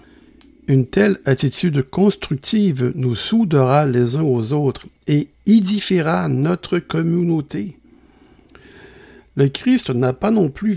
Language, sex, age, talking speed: French, male, 60-79, 110 wpm